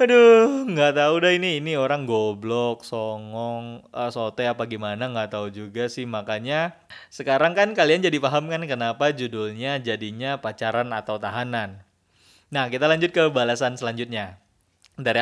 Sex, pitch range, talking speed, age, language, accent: male, 115-145 Hz, 140 wpm, 20-39, Indonesian, native